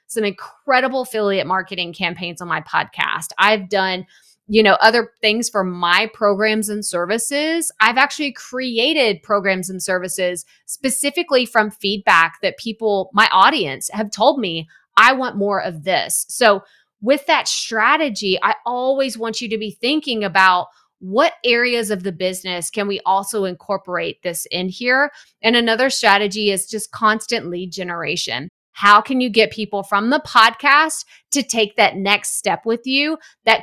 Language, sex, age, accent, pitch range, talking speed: English, female, 30-49, American, 190-240 Hz, 155 wpm